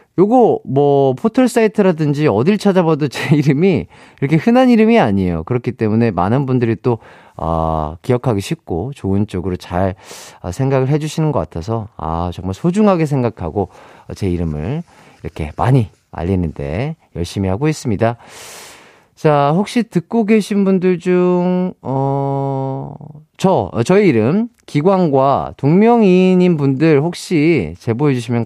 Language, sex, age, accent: Korean, male, 40-59, native